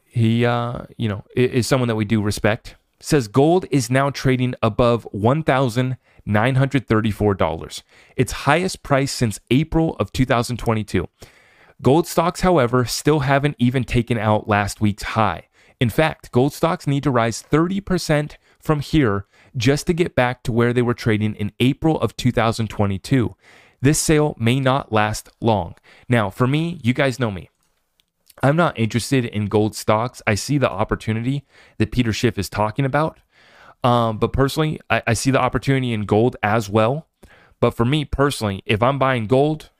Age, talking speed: 30-49, 160 wpm